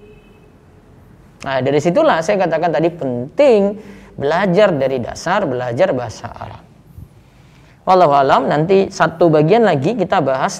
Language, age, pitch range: Indonesian, 20-39, 130-180 Hz